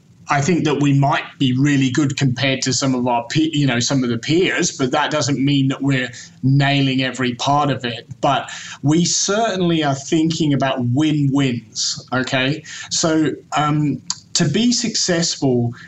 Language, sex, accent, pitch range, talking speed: English, male, British, 135-160 Hz, 165 wpm